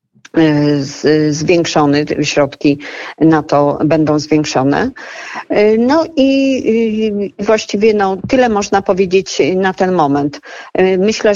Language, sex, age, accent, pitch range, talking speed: Polish, female, 50-69, native, 160-185 Hz, 90 wpm